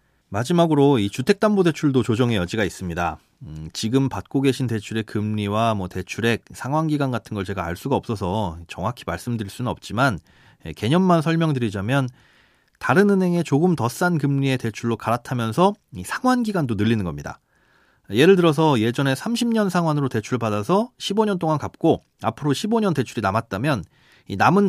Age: 30-49